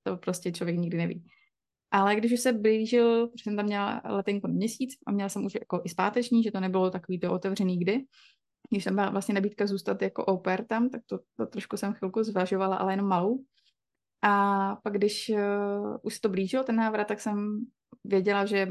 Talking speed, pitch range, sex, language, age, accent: 200 wpm, 190-215 Hz, female, Czech, 20-39, native